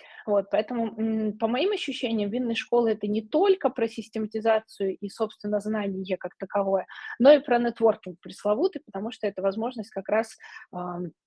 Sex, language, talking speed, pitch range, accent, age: female, Russian, 155 wpm, 195-230 Hz, native, 20-39